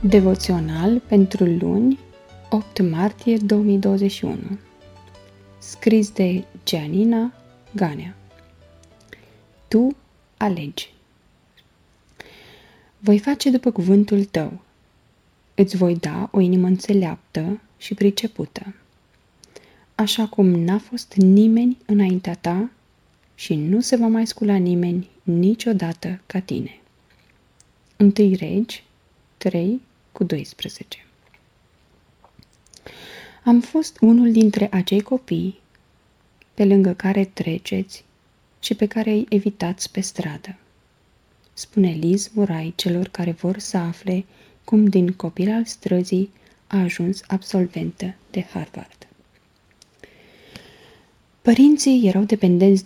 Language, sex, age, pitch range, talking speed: Romanian, female, 20-39, 180-210 Hz, 95 wpm